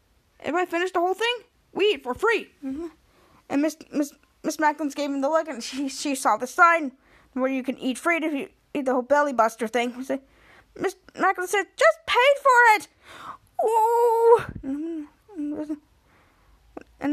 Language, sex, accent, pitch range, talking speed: English, female, American, 270-350 Hz, 170 wpm